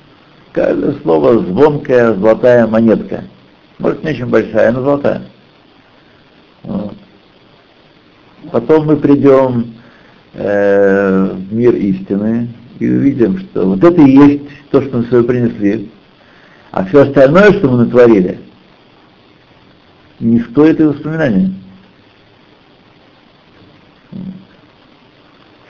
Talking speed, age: 95 wpm, 60-79